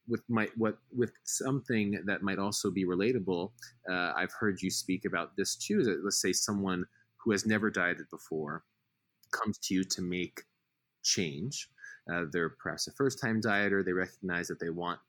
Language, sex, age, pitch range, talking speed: English, male, 20-39, 95-130 Hz, 175 wpm